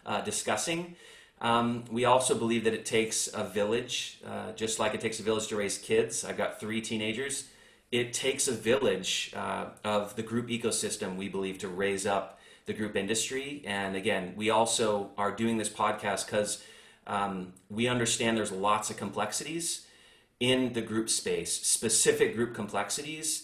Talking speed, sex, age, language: 165 wpm, male, 30-49, English